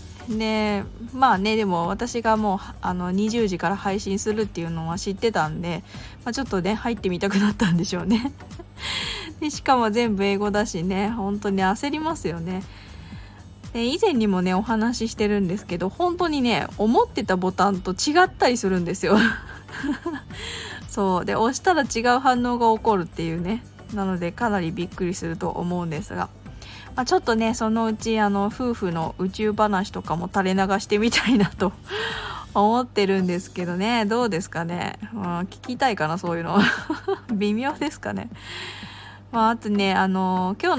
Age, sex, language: 20-39, female, Japanese